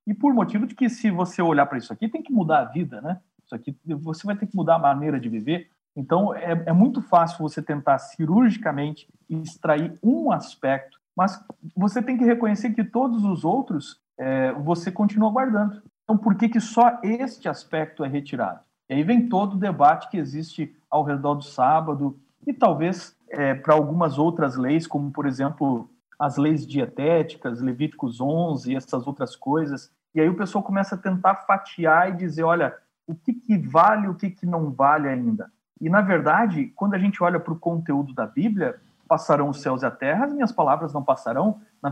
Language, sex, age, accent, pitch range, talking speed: Portuguese, male, 50-69, Brazilian, 150-210 Hz, 195 wpm